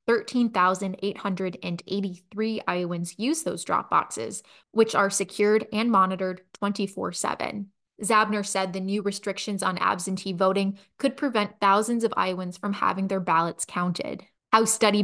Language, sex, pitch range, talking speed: English, female, 185-215 Hz, 130 wpm